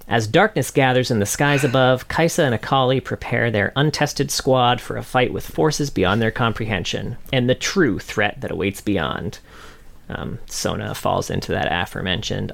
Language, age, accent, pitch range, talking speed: English, 40-59, American, 105-140 Hz, 165 wpm